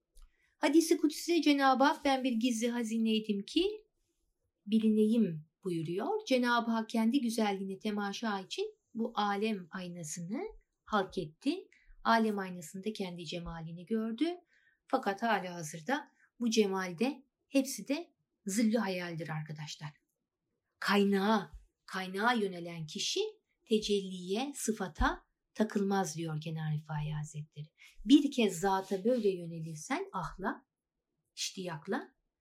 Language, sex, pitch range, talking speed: Turkish, female, 185-255 Hz, 100 wpm